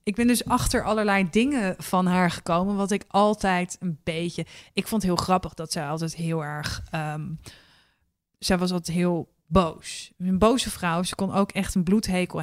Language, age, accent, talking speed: Dutch, 20-39, Dutch, 190 wpm